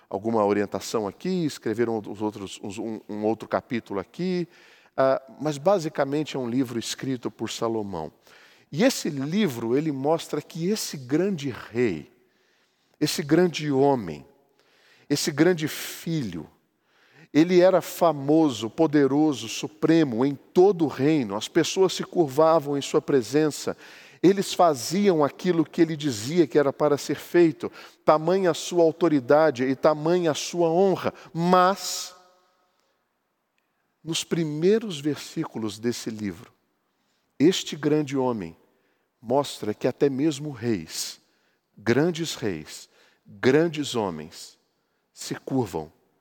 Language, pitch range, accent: Portuguese, 130-170 Hz, Brazilian